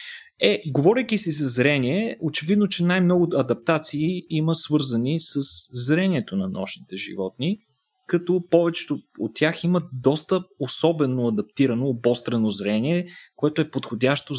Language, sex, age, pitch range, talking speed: Bulgarian, male, 30-49, 125-175 Hz, 120 wpm